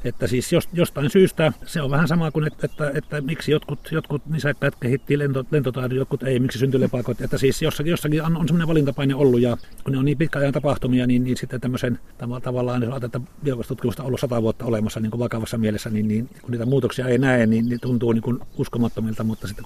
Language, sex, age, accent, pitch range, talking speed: Finnish, male, 50-69, native, 115-140 Hz, 225 wpm